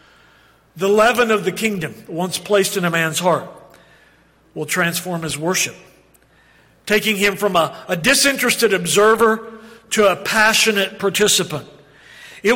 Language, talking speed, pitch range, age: English, 130 wpm, 175-215 Hz, 50-69